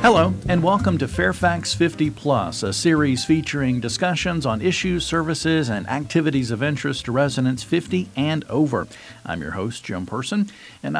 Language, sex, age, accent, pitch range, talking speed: English, male, 50-69, American, 115-160 Hz, 160 wpm